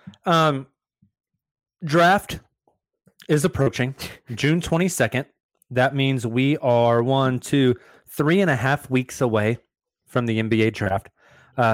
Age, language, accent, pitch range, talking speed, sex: 20-39, English, American, 110-135 Hz, 120 wpm, male